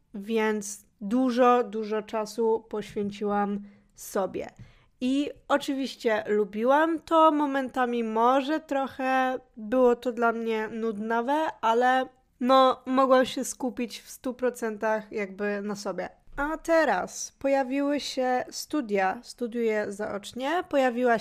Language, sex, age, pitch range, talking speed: Polish, female, 20-39, 215-255 Hz, 100 wpm